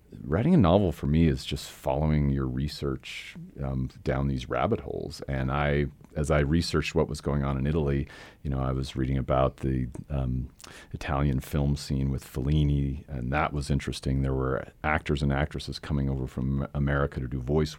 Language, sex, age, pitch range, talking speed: English, male, 40-59, 65-75 Hz, 185 wpm